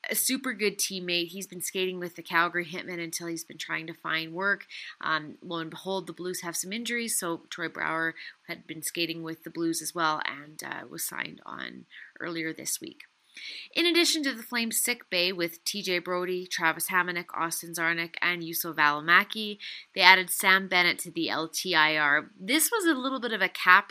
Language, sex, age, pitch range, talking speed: English, female, 30-49, 170-205 Hz, 195 wpm